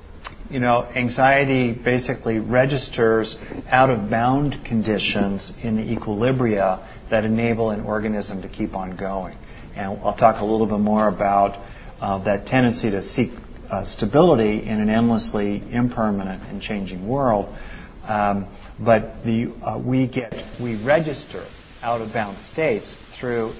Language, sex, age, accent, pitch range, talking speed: English, male, 40-59, American, 100-120 Hz, 140 wpm